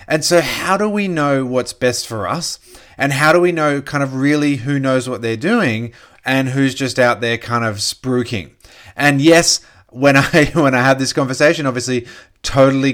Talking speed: 195 wpm